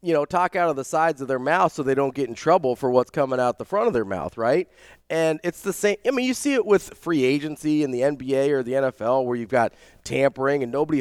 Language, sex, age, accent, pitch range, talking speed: English, male, 30-49, American, 115-150 Hz, 275 wpm